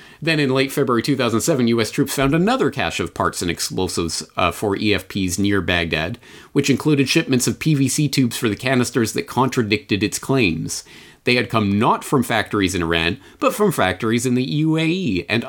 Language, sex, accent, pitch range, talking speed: English, male, American, 95-135 Hz, 180 wpm